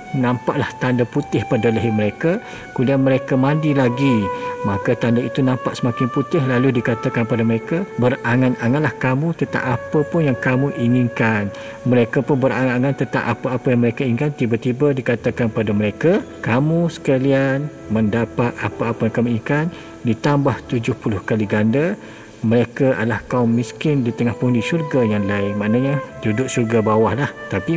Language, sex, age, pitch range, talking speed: Malay, male, 50-69, 120-140 Hz, 145 wpm